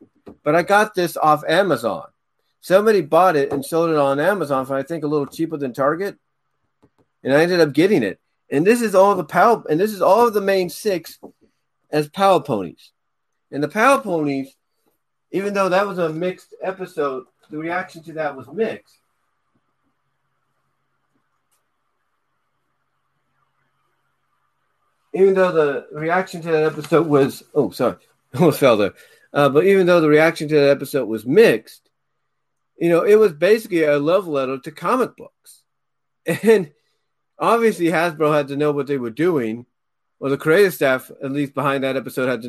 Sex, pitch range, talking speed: male, 145-185 Hz, 165 wpm